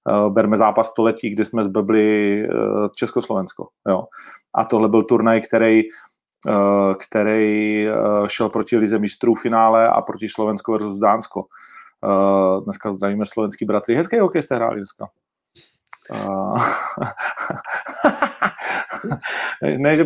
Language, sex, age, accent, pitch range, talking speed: Czech, male, 30-49, native, 110-135 Hz, 100 wpm